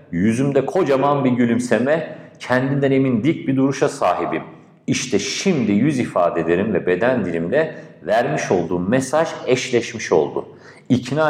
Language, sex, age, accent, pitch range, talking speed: Turkish, male, 50-69, native, 110-145 Hz, 120 wpm